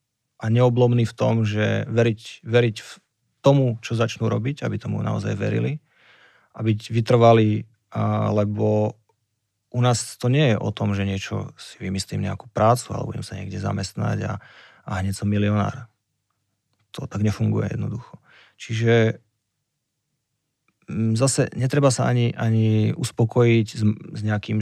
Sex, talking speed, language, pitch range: male, 135 wpm, Slovak, 105-125 Hz